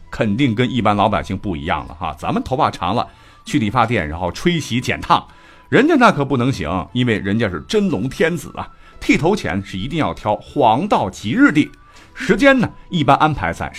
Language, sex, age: Chinese, male, 50-69